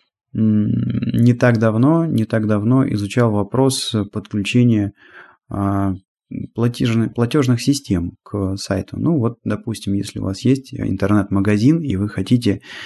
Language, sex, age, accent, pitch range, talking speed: Russian, male, 20-39, native, 100-125 Hz, 110 wpm